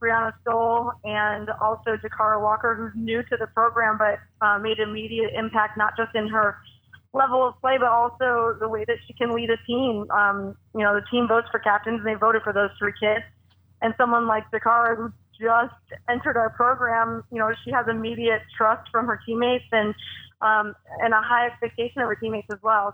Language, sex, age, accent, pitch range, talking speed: English, female, 20-39, American, 210-235 Hz, 200 wpm